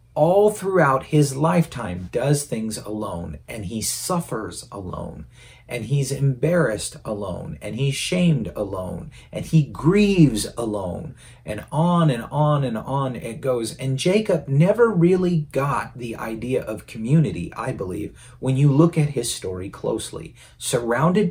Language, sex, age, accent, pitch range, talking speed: English, male, 40-59, American, 115-160 Hz, 140 wpm